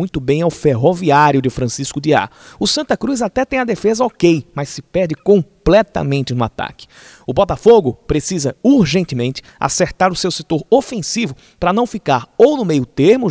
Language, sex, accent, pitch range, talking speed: Portuguese, male, Brazilian, 145-190 Hz, 175 wpm